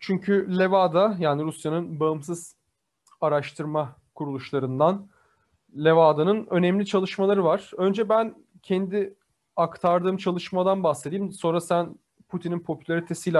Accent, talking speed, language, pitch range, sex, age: native, 95 wpm, Turkish, 165-210 Hz, male, 30-49